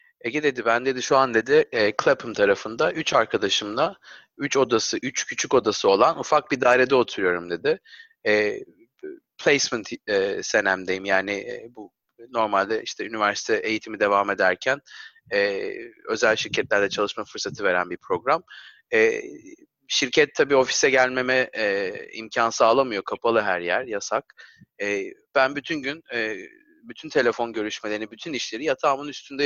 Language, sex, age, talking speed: Turkish, male, 30-49, 140 wpm